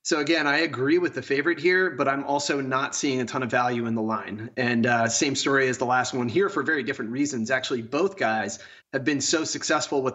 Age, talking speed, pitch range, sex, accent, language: 30-49, 240 wpm, 125-150 Hz, male, American, English